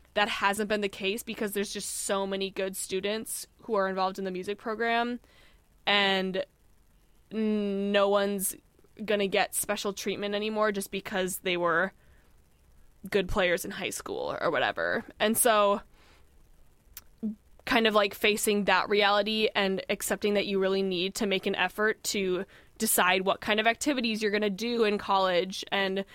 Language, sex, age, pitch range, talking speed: English, female, 20-39, 185-215 Hz, 160 wpm